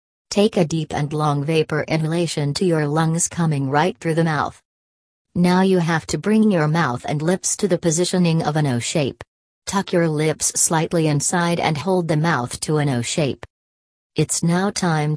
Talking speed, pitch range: 185 wpm, 150-175 Hz